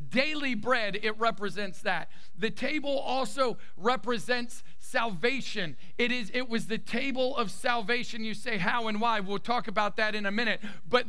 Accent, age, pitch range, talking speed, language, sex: American, 50-69, 195-245 Hz, 170 wpm, English, male